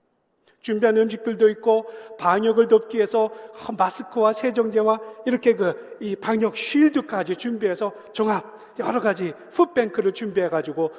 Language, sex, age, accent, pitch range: Korean, male, 40-59, native, 195-290 Hz